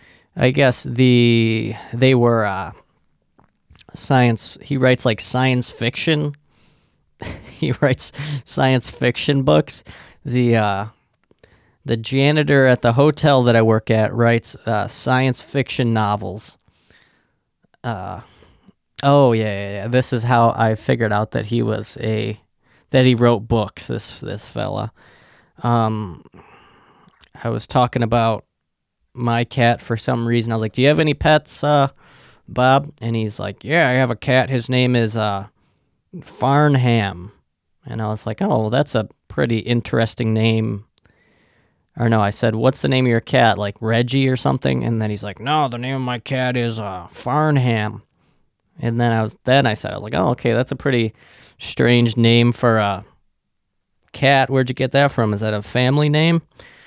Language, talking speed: English, 165 wpm